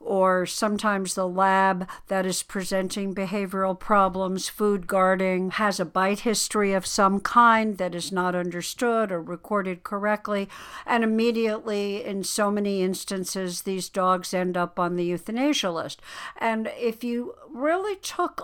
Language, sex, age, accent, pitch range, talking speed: English, female, 60-79, American, 205-260 Hz, 145 wpm